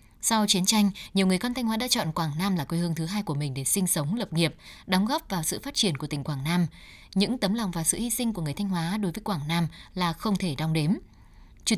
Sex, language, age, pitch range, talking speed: female, Vietnamese, 20-39, 170-220 Hz, 280 wpm